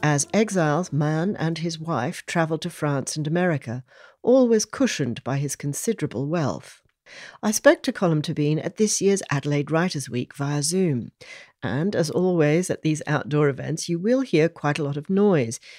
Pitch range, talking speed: 165-230 Hz, 170 wpm